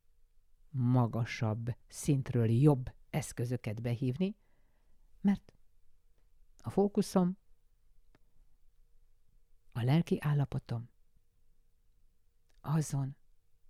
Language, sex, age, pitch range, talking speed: Hungarian, female, 50-69, 115-155 Hz, 55 wpm